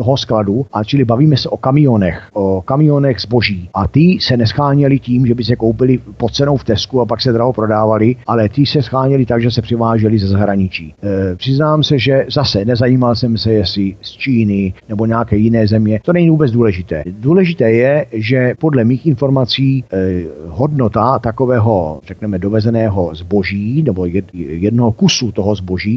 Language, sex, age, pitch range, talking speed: Czech, male, 50-69, 105-130 Hz, 175 wpm